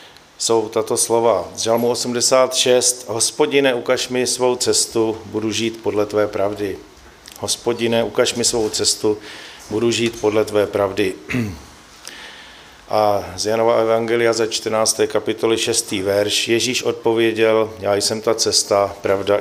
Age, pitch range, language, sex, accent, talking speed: 40-59, 100-115 Hz, Czech, male, native, 125 wpm